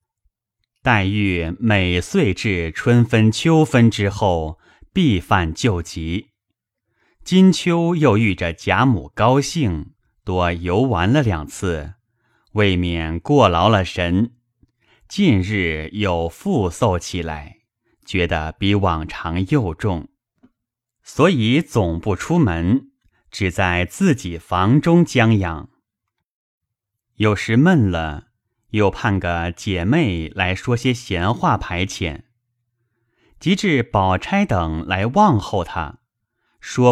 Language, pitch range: Chinese, 90-120 Hz